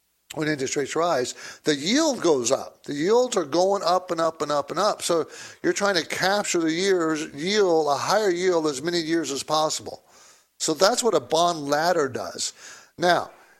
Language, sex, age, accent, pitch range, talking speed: English, male, 60-79, American, 130-175 Hz, 190 wpm